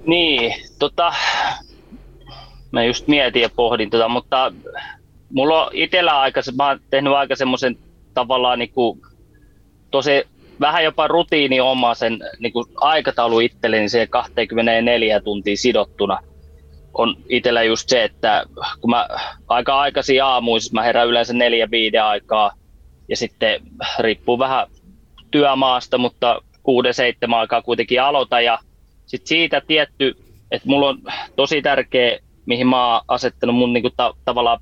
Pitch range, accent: 110-130 Hz, native